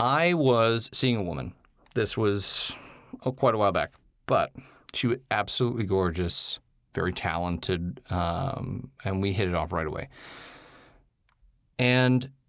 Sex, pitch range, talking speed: male, 105-135 Hz, 135 wpm